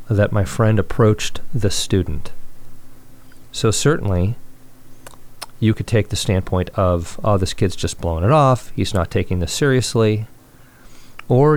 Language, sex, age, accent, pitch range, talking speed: English, male, 40-59, American, 95-125 Hz, 140 wpm